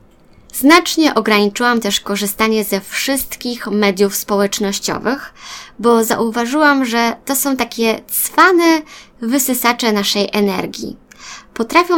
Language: Polish